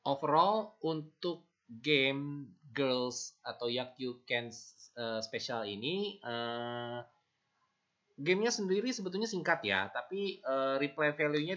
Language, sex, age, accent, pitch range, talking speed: Indonesian, male, 20-39, native, 120-165 Hz, 105 wpm